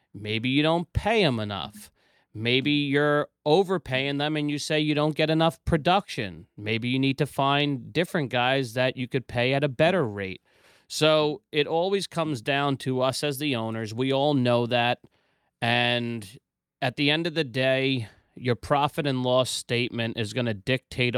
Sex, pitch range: male, 115-145 Hz